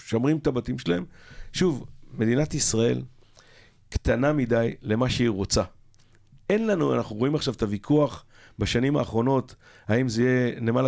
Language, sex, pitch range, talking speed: Hebrew, male, 110-135 Hz, 140 wpm